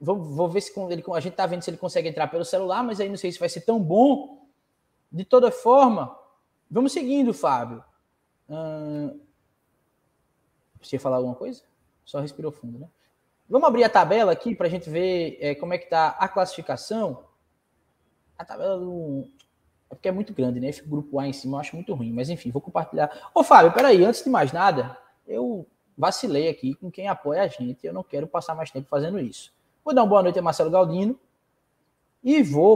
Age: 20-39